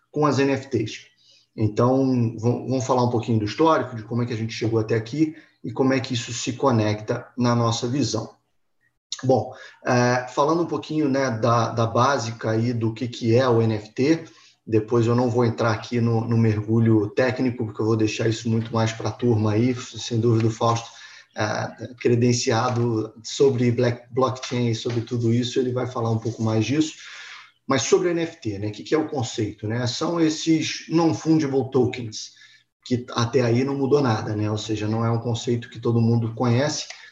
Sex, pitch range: male, 115-130 Hz